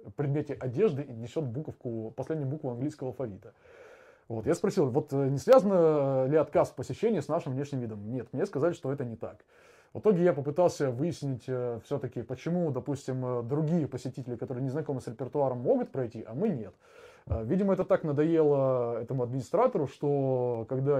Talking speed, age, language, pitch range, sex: 165 wpm, 20-39, Russian, 125-170 Hz, male